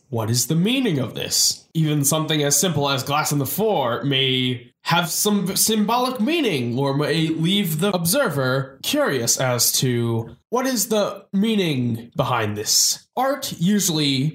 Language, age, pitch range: English, 20-39, 135-195 Hz